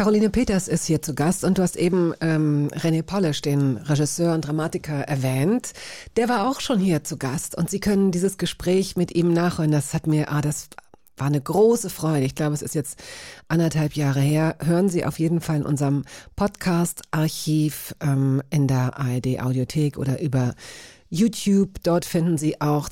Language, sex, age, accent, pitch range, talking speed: German, female, 40-59, German, 150-195 Hz, 185 wpm